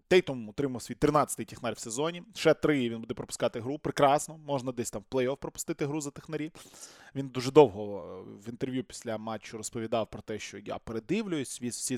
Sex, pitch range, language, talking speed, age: male, 115-150 Hz, Ukrainian, 195 wpm, 20-39